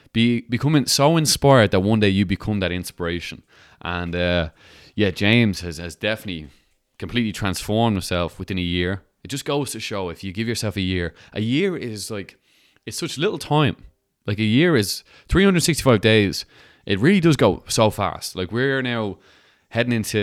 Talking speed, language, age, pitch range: 180 wpm, English, 20-39, 90-110 Hz